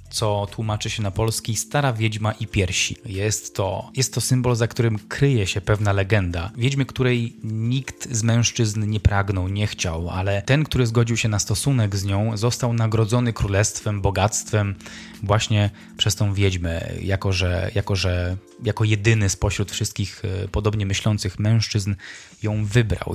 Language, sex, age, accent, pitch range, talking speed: Polish, male, 20-39, native, 100-115 Hz, 155 wpm